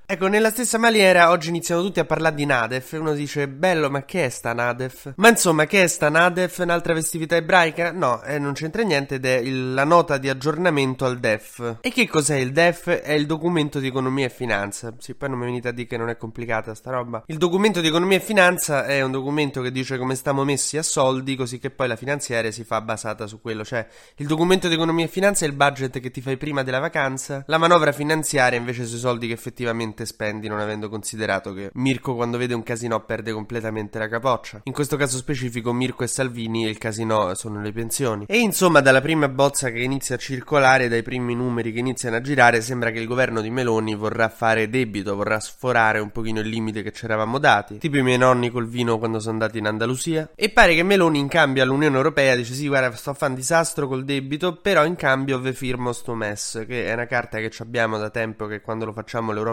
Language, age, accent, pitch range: Italian, 20-39, native, 115-150 Hz